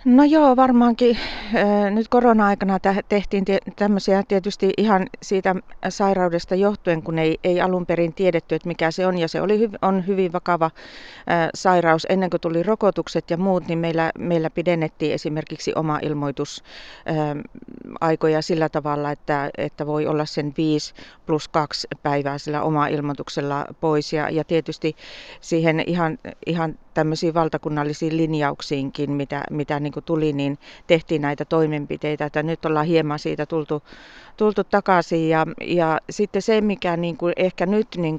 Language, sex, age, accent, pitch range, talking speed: Finnish, female, 40-59, native, 155-190 Hz, 145 wpm